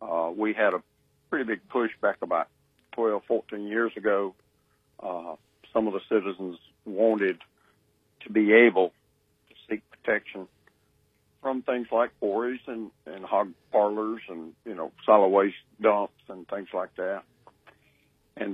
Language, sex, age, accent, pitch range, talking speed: English, male, 50-69, American, 95-110 Hz, 140 wpm